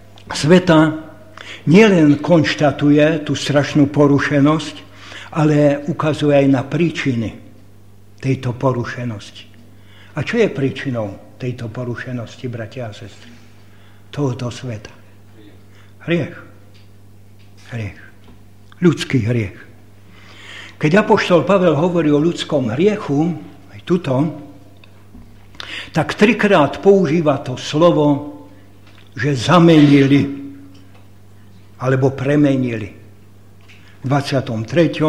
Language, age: Slovak, 60-79